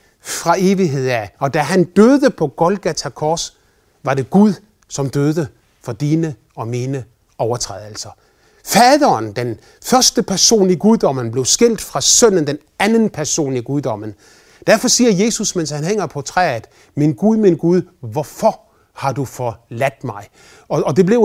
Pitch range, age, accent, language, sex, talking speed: 135-210 Hz, 30-49, native, Danish, male, 160 wpm